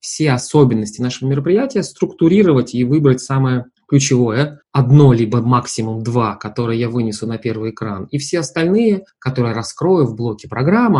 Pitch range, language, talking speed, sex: 115-145 Hz, Russian, 145 wpm, male